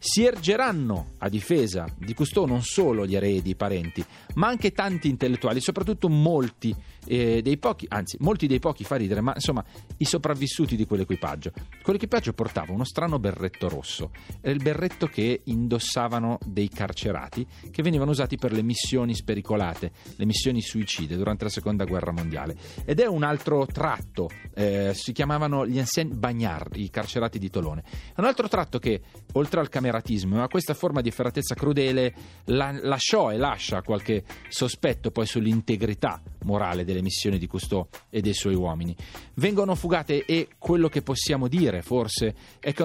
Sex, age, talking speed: male, 40-59, 160 wpm